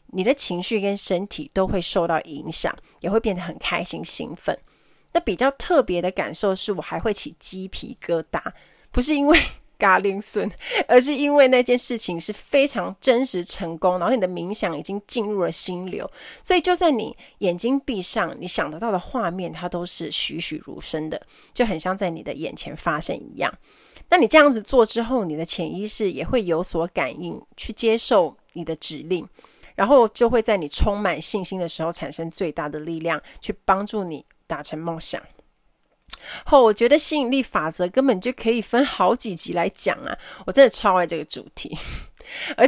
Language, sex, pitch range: Chinese, female, 175-240 Hz